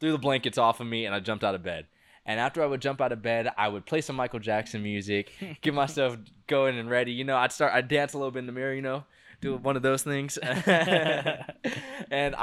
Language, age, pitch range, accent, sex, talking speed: English, 20-39, 100-135 Hz, American, male, 250 wpm